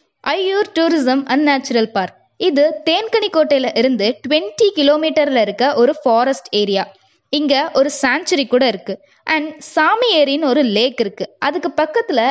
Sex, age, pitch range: female, 20-39, 230-315 Hz